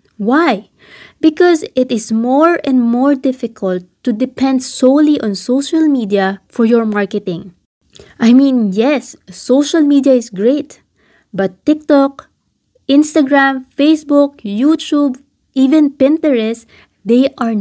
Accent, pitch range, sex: Filipino, 205-275 Hz, female